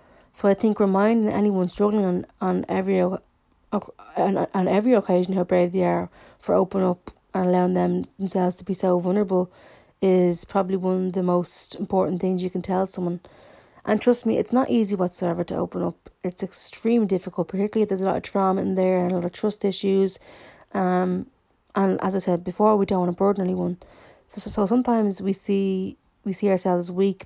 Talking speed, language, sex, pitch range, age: 200 wpm, English, female, 180-210 Hz, 30-49